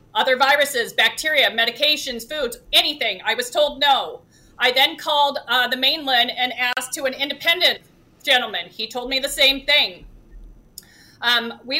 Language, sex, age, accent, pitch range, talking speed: English, female, 30-49, American, 265-330 Hz, 155 wpm